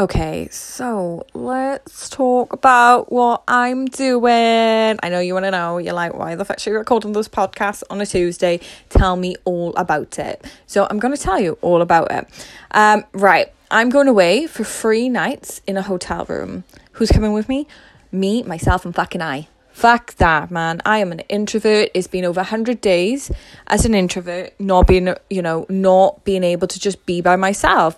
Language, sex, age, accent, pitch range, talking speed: English, female, 10-29, British, 180-220 Hz, 195 wpm